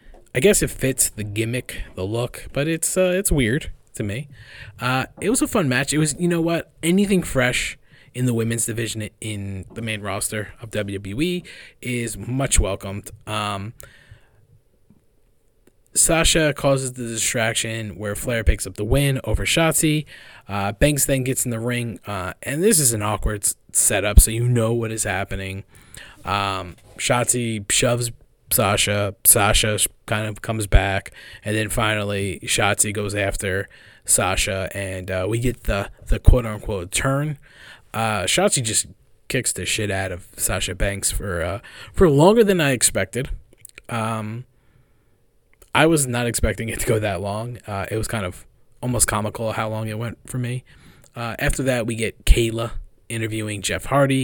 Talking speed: 165 wpm